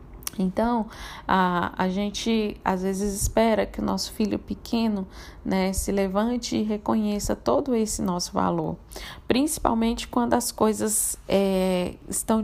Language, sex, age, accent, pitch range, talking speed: Portuguese, female, 20-39, Brazilian, 180-205 Hz, 125 wpm